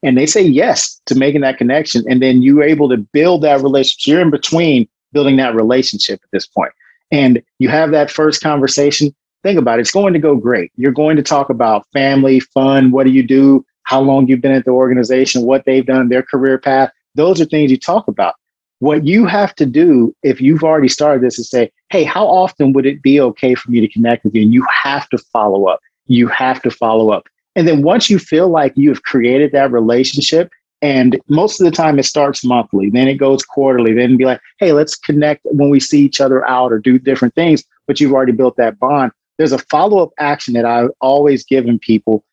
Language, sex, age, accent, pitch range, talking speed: English, male, 40-59, American, 130-150 Hz, 225 wpm